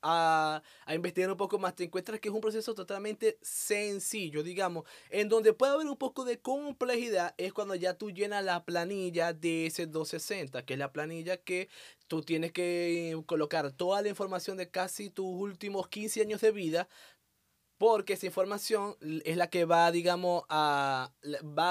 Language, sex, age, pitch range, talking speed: Spanish, male, 20-39, 165-200 Hz, 175 wpm